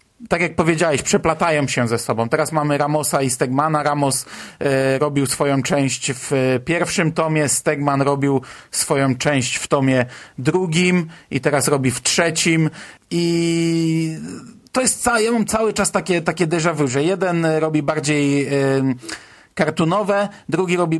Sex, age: male, 40-59